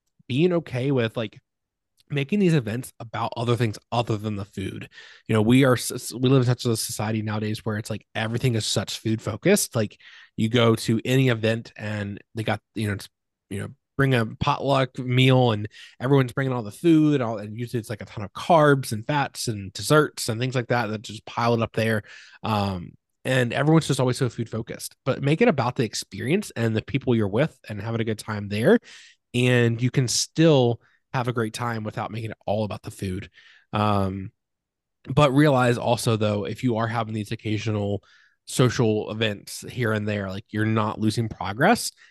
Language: English